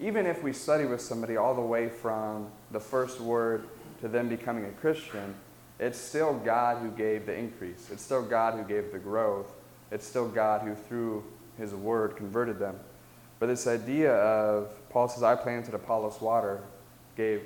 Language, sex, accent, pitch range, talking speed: English, male, American, 110-135 Hz, 180 wpm